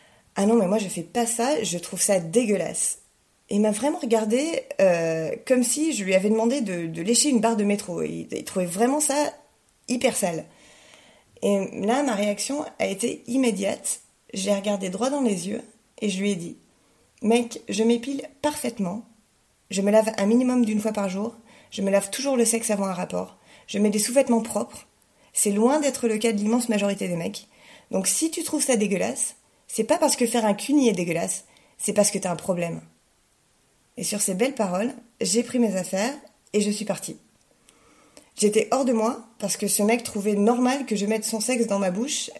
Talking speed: 205 wpm